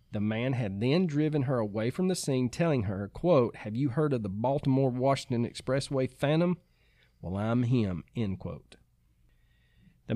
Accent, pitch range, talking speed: American, 110-140 Hz, 165 wpm